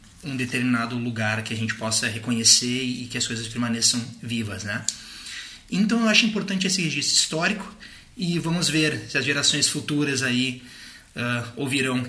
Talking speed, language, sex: 150 wpm, Portuguese, male